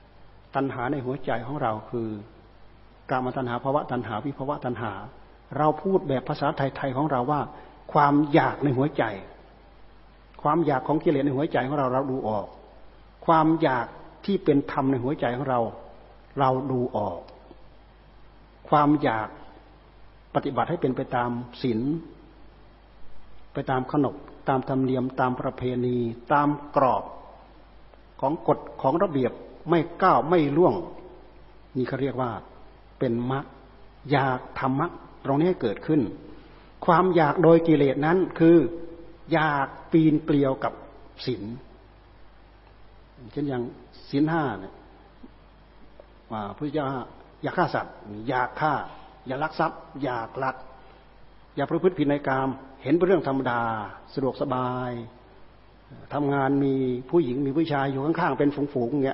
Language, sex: Thai, male